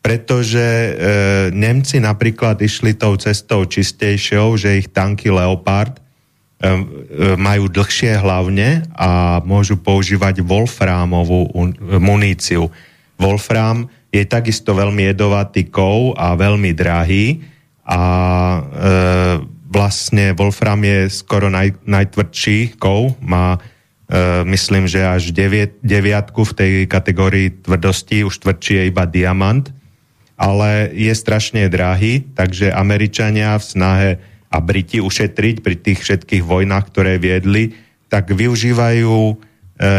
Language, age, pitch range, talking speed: Slovak, 30-49, 95-110 Hz, 115 wpm